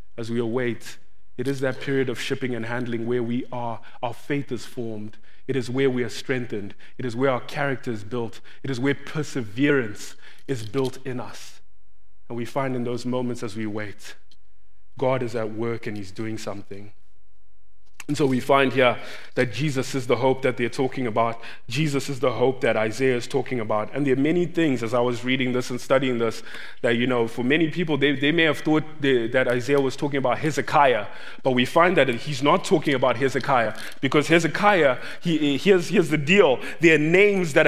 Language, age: English, 20-39